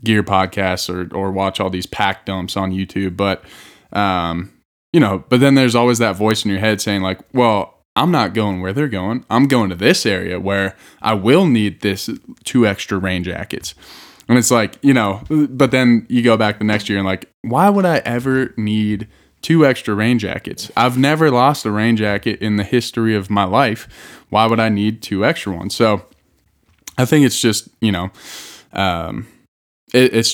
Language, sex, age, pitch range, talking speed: English, male, 20-39, 95-115 Hz, 195 wpm